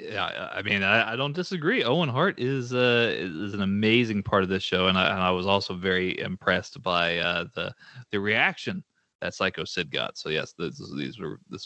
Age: 30-49